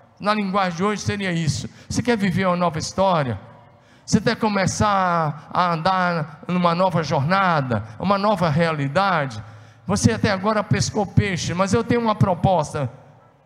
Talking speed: 145 wpm